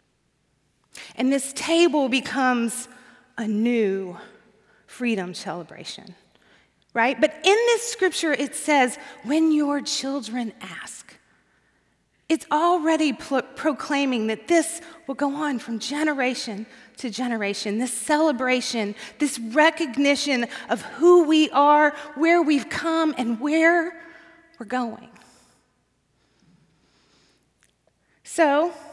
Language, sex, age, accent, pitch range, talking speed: English, female, 30-49, American, 230-310 Hz, 100 wpm